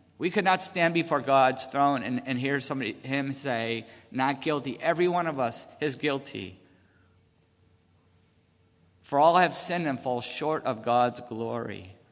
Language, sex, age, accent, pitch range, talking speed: English, male, 50-69, American, 130-180 Hz, 155 wpm